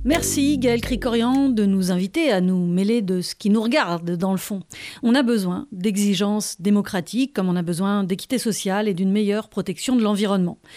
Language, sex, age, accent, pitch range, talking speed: French, female, 40-59, French, 190-250 Hz, 190 wpm